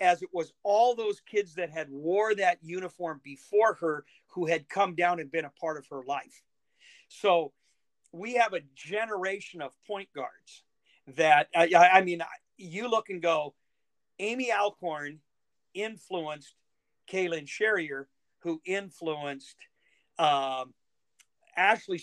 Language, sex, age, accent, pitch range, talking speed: English, male, 50-69, American, 155-200 Hz, 135 wpm